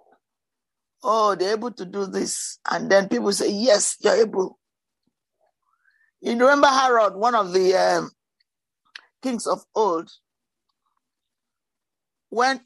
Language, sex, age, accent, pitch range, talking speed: English, male, 50-69, Nigerian, 190-255 Hz, 120 wpm